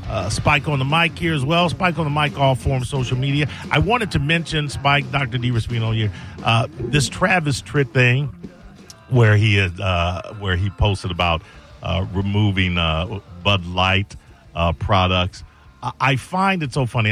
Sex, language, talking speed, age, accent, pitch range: male, English, 180 wpm, 50-69, American, 100-135 Hz